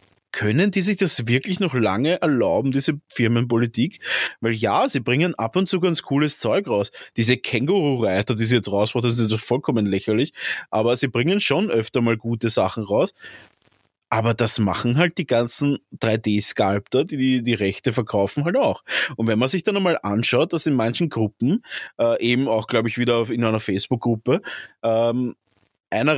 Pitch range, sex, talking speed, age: 110-135 Hz, male, 175 wpm, 20-39